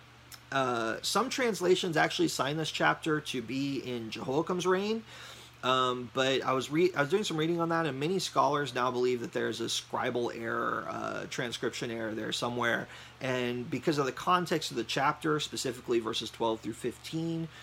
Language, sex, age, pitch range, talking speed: English, male, 30-49, 120-160 Hz, 175 wpm